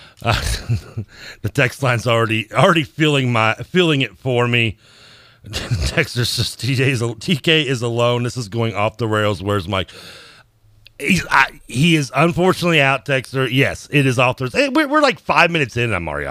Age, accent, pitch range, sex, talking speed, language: 40-59, American, 105-130 Hz, male, 180 wpm, English